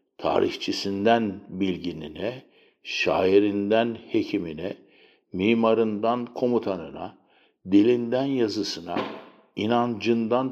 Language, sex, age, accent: Turkish, male, 60-79, native